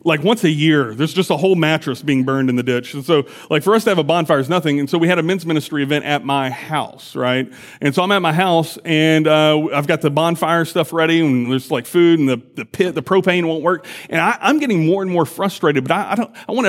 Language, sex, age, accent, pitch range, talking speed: English, male, 30-49, American, 150-210 Hz, 275 wpm